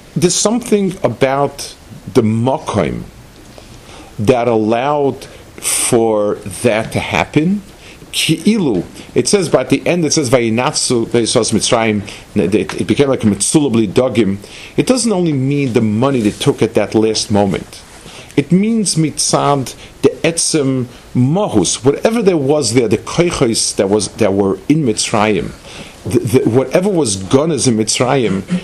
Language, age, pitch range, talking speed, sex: English, 50-69, 110-155 Hz, 130 wpm, male